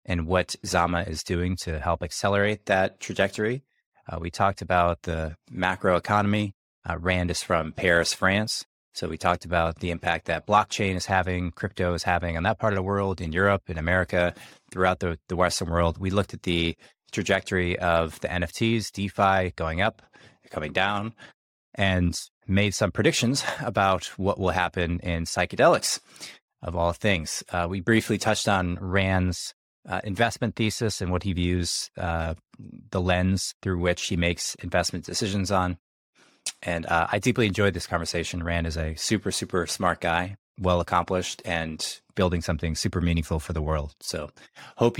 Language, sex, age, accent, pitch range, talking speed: English, male, 20-39, American, 85-100 Hz, 170 wpm